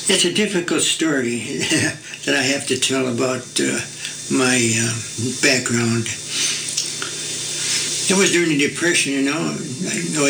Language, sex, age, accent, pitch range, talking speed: English, male, 60-79, American, 130-150 Hz, 135 wpm